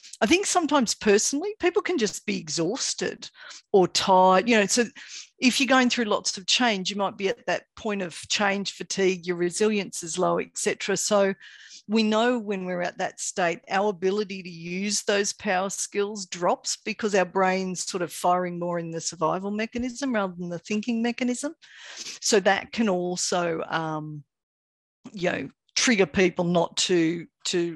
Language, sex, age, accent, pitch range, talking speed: English, female, 50-69, Australian, 175-220 Hz, 175 wpm